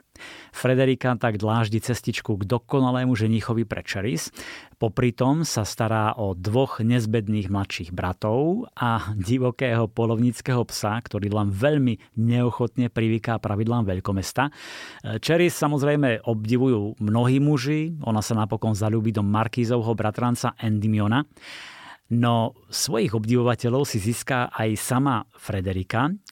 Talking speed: 110 wpm